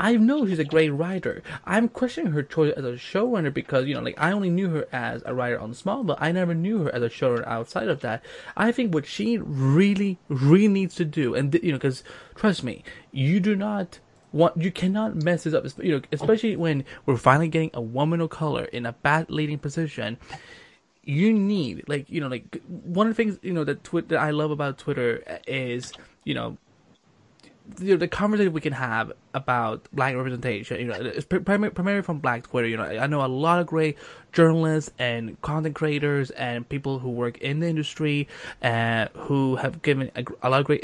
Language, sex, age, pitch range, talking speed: English, male, 20-39, 130-175 Hz, 205 wpm